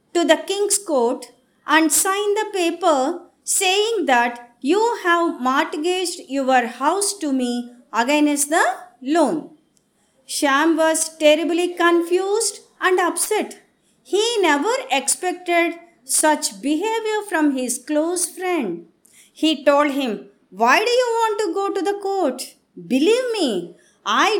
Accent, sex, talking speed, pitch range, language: native, female, 125 wpm, 290-395 Hz, Telugu